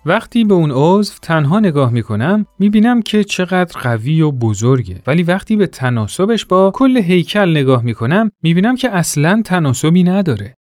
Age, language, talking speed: 40-59, Persian, 150 wpm